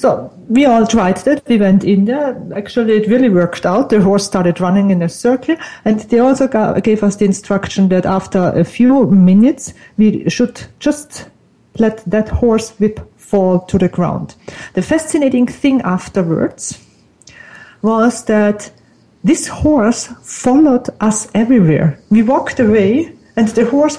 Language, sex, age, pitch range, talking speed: English, female, 50-69, 195-255 Hz, 155 wpm